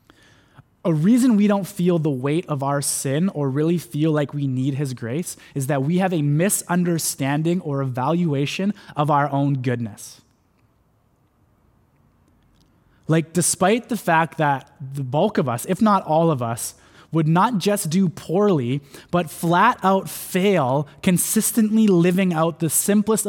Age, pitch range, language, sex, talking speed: 20-39, 140-195 Hz, English, male, 150 wpm